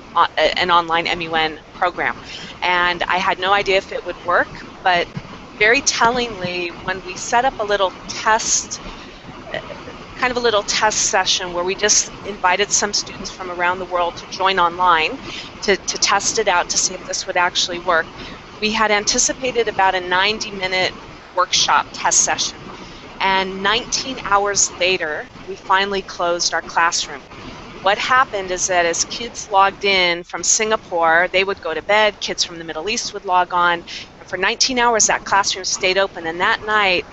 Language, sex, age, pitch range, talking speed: English, female, 30-49, 175-205 Hz, 170 wpm